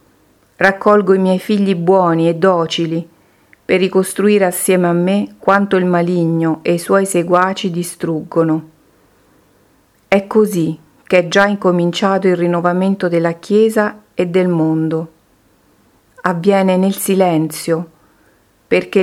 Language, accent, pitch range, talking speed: Italian, native, 165-195 Hz, 115 wpm